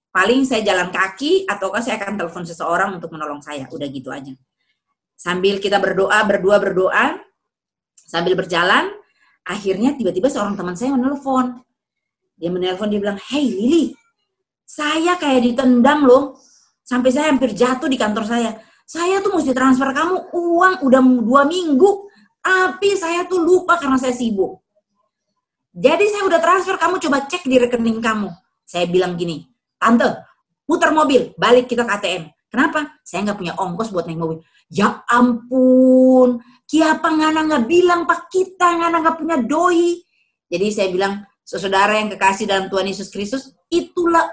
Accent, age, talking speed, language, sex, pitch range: native, 30-49, 150 wpm, Indonesian, female, 195-315 Hz